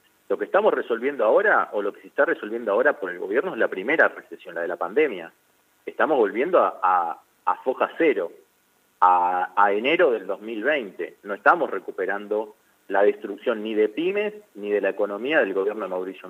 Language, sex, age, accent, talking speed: Spanish, male, 40-59, Argentinian, 185 wpm